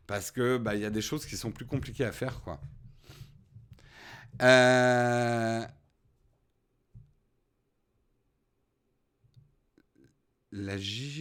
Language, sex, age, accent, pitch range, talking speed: French, male, 50-69, French, 120-160 Hz, 85 wpm